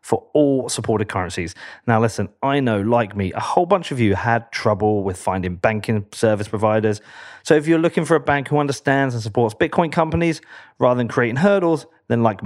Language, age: English, 30-49